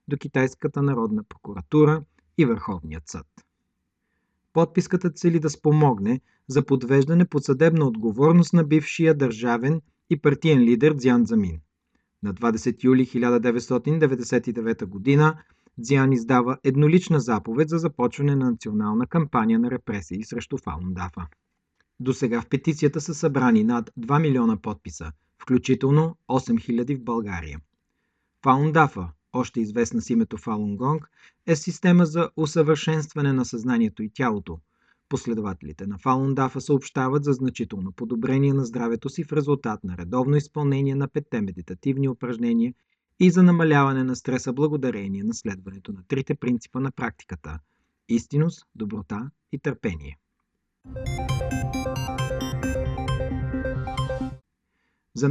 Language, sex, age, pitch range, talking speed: Bulgarian, male, 40-59, 115-150 Hz, 115 wpm